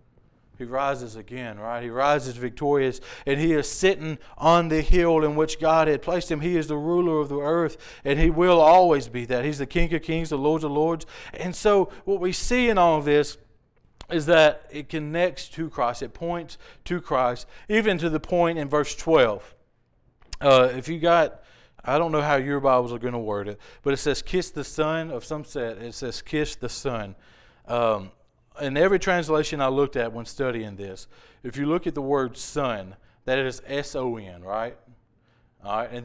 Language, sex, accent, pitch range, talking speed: English, male, American, 125-160 Hz, 200 wpm